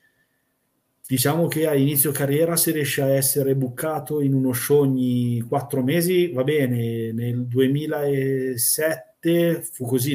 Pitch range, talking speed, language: 130-150 Hz, 130 wpm, Italian